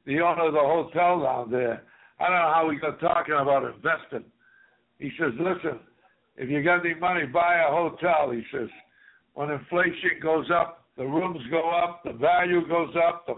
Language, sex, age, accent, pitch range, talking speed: English, male, 60-79, American, 160-200 Hz, 190 wpm